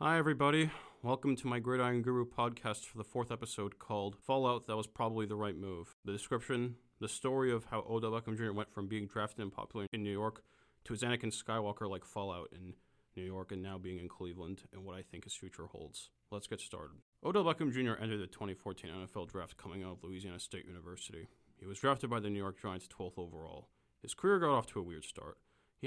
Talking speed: 220 wpm